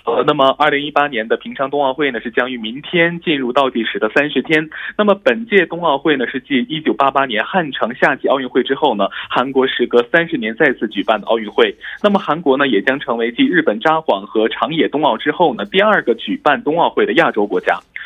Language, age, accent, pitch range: Korean, 20-39, Chinese, 125-195 Hz